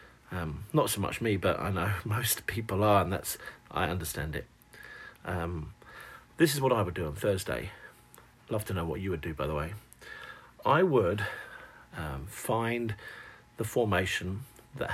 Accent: British